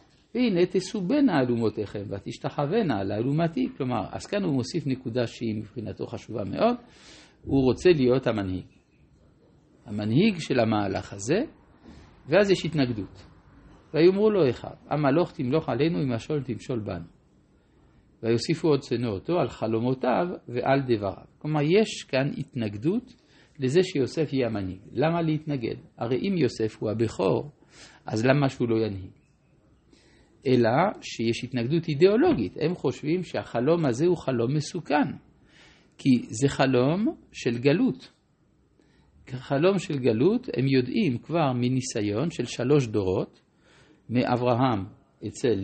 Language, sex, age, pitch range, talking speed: Hebrew, male, 50-69, 115-155 Hz, 125 wpm